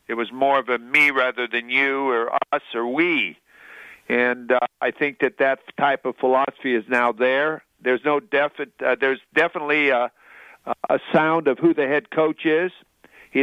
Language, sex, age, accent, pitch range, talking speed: English, male, 50-69, American, 125-150 Hz, 185 wpm